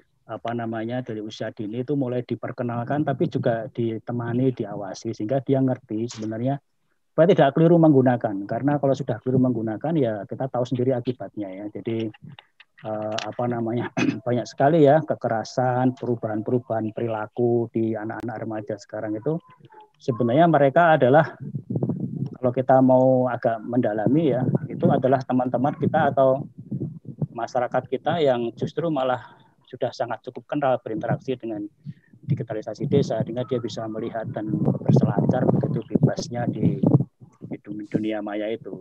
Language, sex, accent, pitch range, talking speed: Indonesian, male, native, 115-140 Hz, 135 wpm